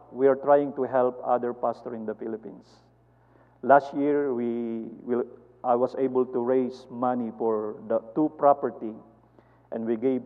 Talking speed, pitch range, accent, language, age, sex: 160 wpm, 115-135 Hz, Filipino, English, 50-69, male